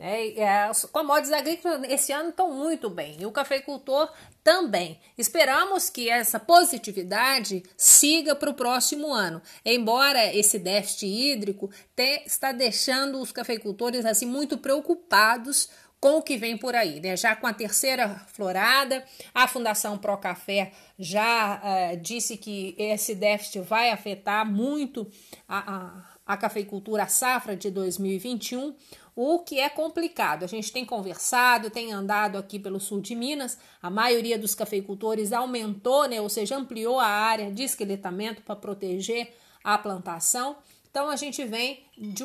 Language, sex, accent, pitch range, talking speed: Portuguese, female, Brazilian, 210-275 Hz, 145 wpm